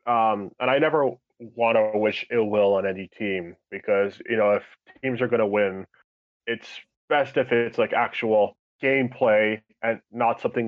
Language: English